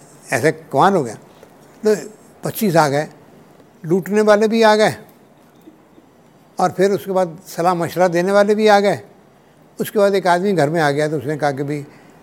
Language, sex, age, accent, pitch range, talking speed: Hindi, male, 60-79, native, 140-200 Hz, 180 wpm